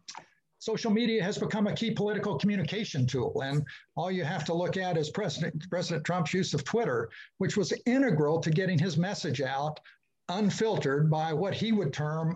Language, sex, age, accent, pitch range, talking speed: English, male, 60-79, American, 155-200 Hz, 180 wpm